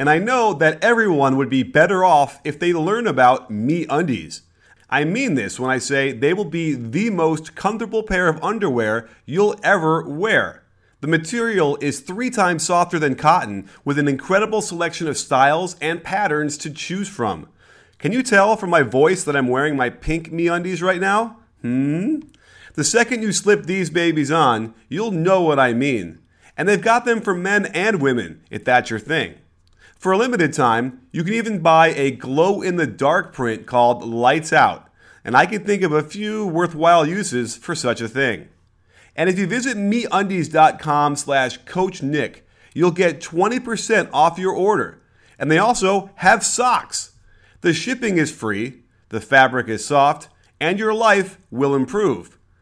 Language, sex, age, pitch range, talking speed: English, male, 30-49, 135-195 Hz, 170 wpm